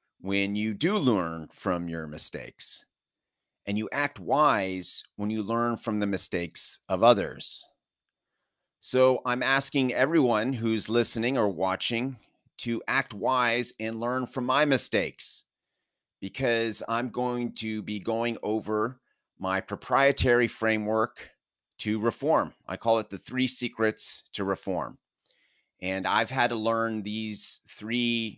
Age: 30-49